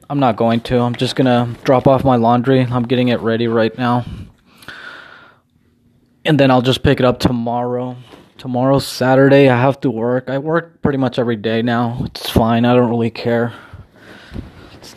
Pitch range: 120-135 Hz